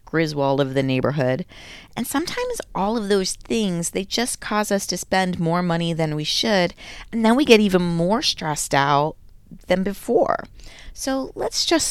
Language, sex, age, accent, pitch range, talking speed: English, female, 30-49, American, 140-200 Hz, 170 wpm